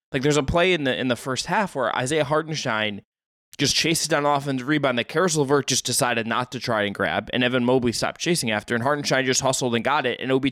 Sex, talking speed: male, 245 wpm